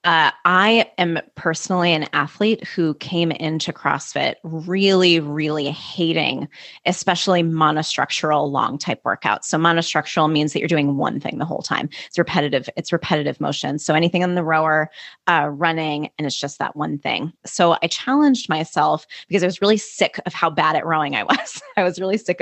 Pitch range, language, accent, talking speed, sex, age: 155-185 Hz, English, American, 180 wpm, female, 20-39